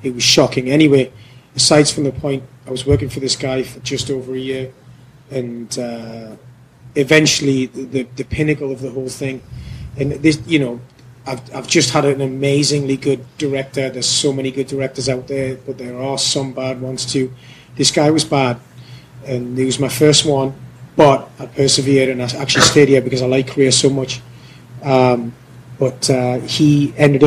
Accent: British